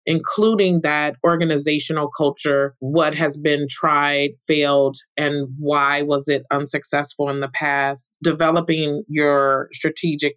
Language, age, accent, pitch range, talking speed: English, 30-49, American, 145-165 Hz, 115 wpm